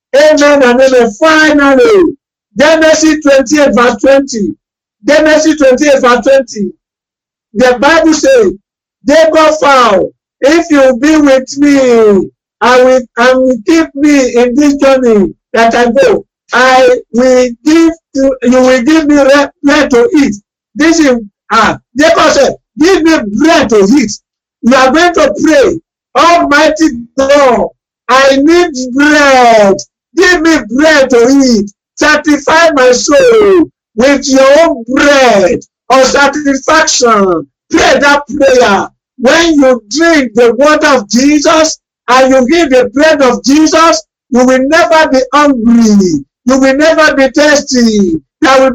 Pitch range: 250-310 Hz